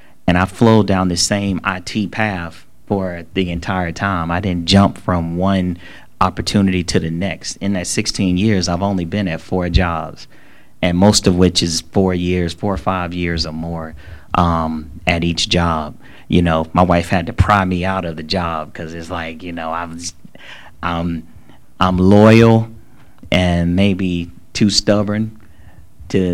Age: 30-49